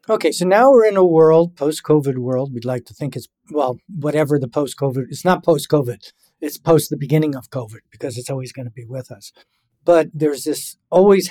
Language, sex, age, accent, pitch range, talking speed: English, male, 50-69, American, 130-160 Hz, 205 wpm